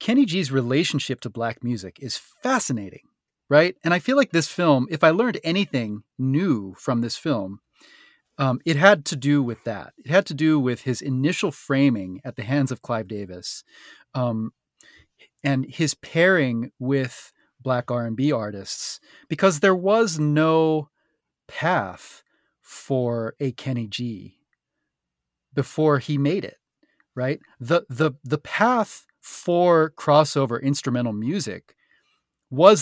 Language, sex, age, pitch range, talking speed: English, male, 30-49, 120-160 Hz, 135 wpm